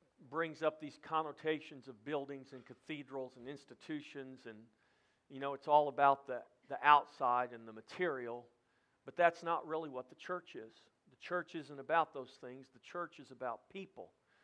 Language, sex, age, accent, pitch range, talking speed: English, male, 50-69, American, 135-170 Hz, 170 wpm